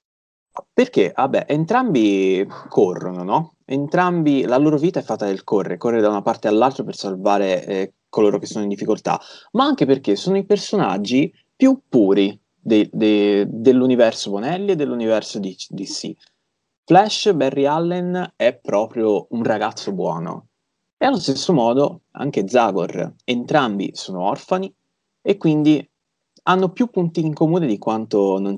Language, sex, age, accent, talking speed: Italian, male, 20-39, native, 140 wpm